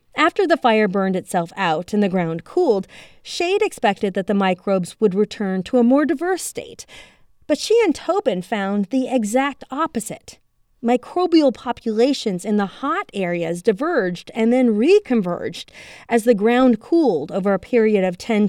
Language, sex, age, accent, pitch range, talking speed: English, female, 30-49, American, 200-270 Hz, 160 wpm